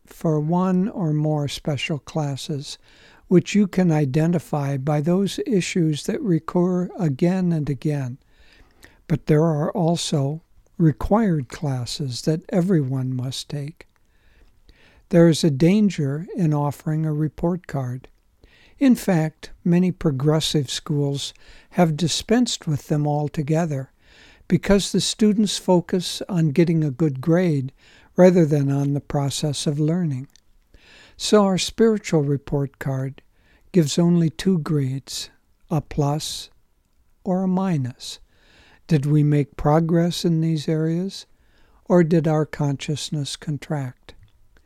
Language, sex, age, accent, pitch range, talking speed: English, male, 60-79, American, 145-175 Hz, 120 wpm